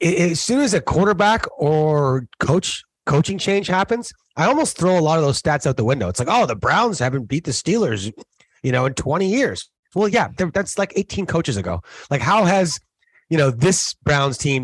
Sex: male